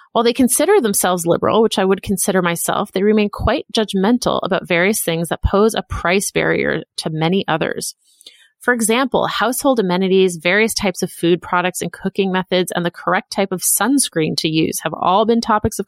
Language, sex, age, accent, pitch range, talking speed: English, female, 30-49, American, 180-230 Hz, 190 wpm